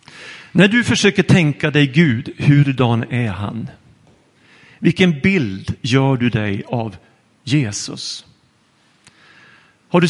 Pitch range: 125-160 Hz